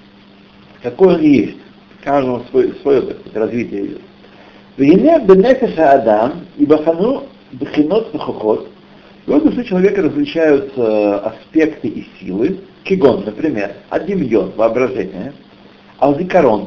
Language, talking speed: Russian, 110 wpm